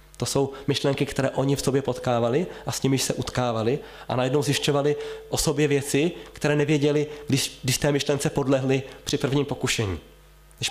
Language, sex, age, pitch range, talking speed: Slovak, male, 20-39, 120-140 Hz, 170 wpm